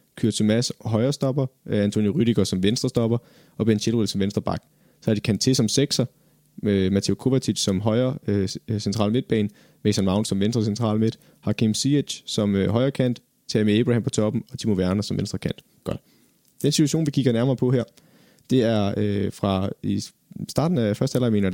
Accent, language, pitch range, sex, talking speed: native, Danish, 105-125 Hz, male, 175 wpm